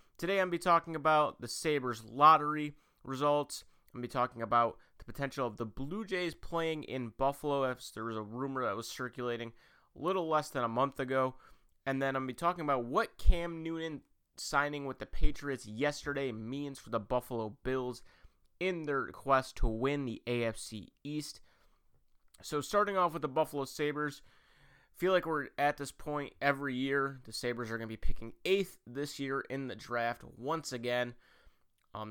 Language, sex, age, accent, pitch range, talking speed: English, male, 30-49, American, 120-150 Hz, 185 wpm